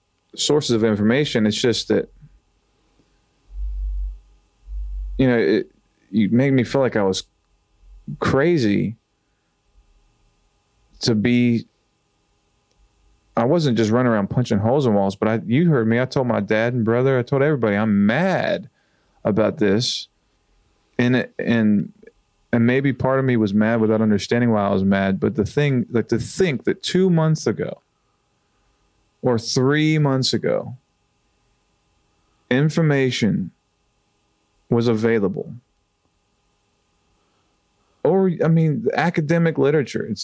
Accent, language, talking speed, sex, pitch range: American, English, 130 wpm, male, 100-130 Hz